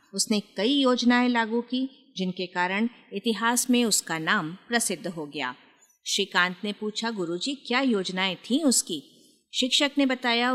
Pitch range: 180-250 Hz